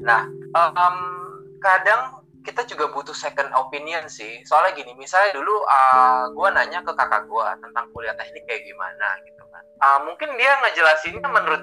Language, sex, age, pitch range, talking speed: Malay, male, 20-39, 115-155 Hz, 155 wpm